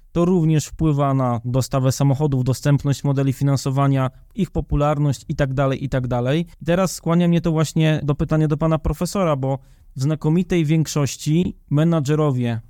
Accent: native